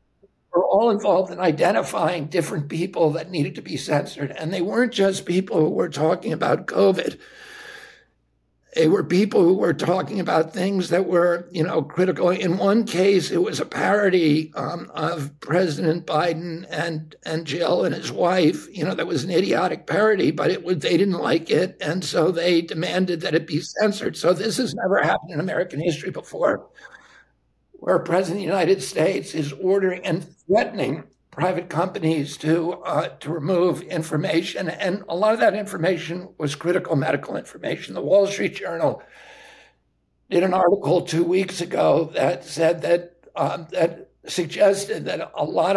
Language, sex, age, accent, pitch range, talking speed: English, male, 60-79, American, 160-190 Hz, 170 wpm